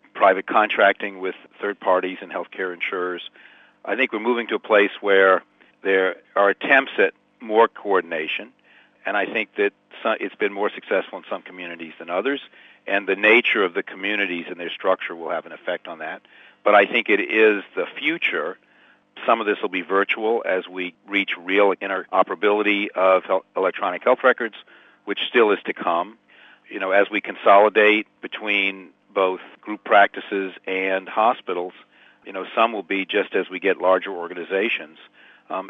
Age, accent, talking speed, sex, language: 50-69, American, 170 wpm, male, English